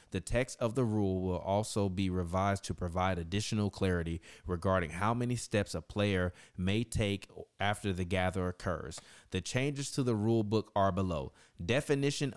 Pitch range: 95-120 Hz